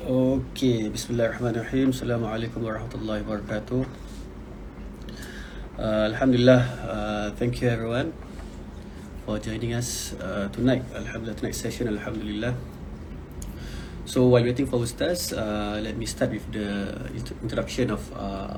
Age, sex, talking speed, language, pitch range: 30-49, male, 110 wpm, Malay, 75-125 Hz